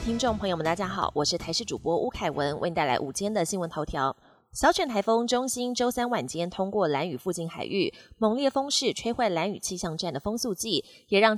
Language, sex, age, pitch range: Chinese, female, 20-39, 175-235 Hz